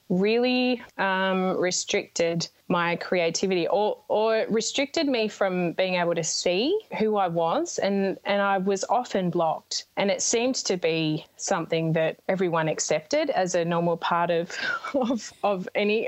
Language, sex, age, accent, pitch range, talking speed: English, female, 20-39, Australian, 175-215 Hz, 150 wpm